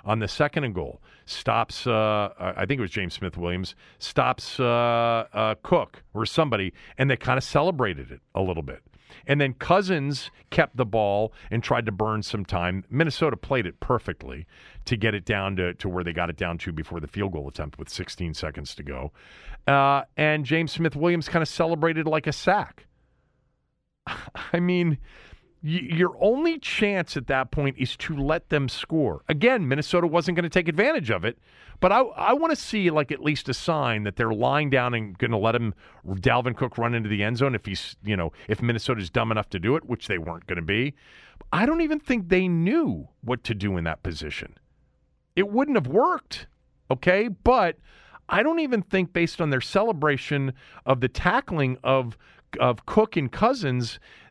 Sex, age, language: male, 40-59, English